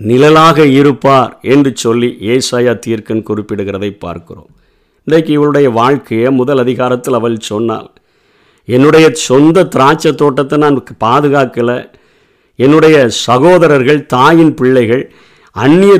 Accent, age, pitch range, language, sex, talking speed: native, 50-69, 120-150 Hz, Tamil, male, 100 wpm